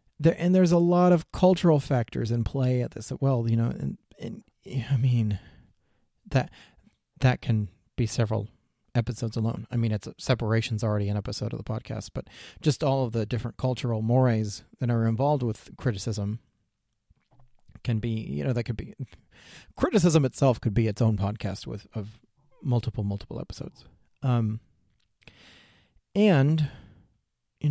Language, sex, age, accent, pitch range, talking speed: English, male, 40-59, American, 110-140 Hz, 150 wpm